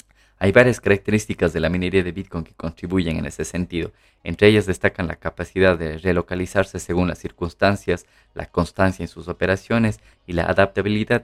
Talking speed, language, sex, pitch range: 165 wpm, Spanish, male, 90-110 Hz